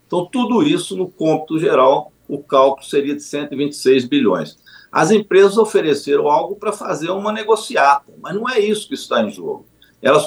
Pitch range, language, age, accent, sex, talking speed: 135-215 Hz, Portuguese, 50-69, Brazilian, male, 170 wpm